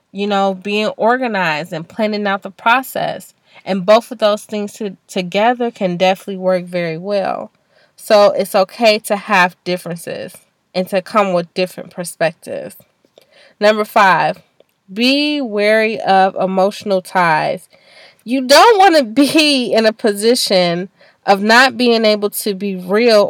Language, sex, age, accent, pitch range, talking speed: English, female, 20-39, American, 185-225 Hz, 140 wpm